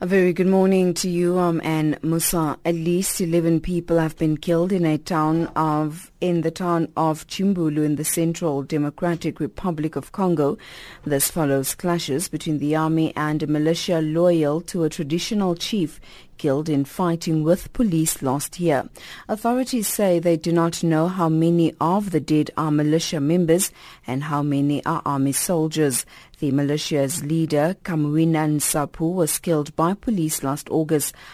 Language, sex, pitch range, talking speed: English, female, 150-180 Hz, 160 wpm